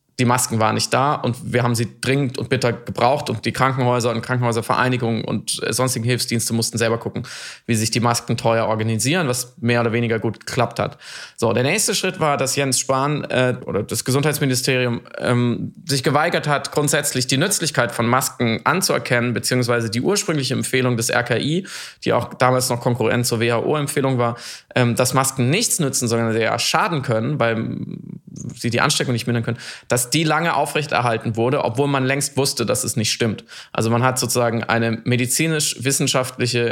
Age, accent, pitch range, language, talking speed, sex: 20-39, German, 115-140 Hz, German, 175 wpm, male